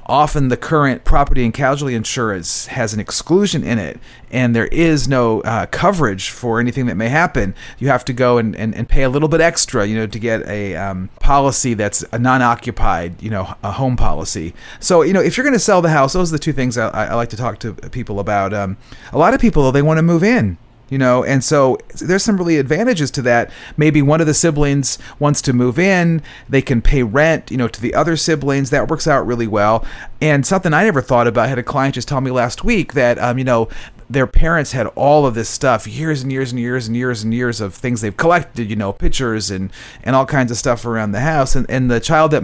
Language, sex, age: English, male, 40-59